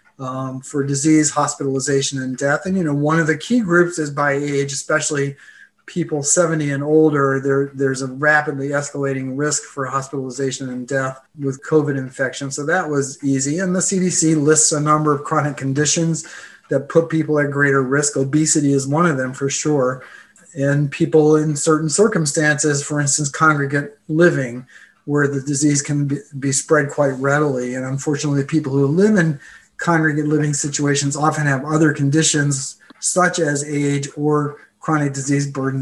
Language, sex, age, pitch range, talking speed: English, male, 30-49, 135-155 Hz, 165 wpm